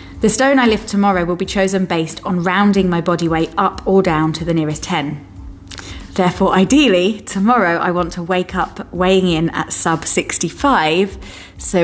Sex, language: female, English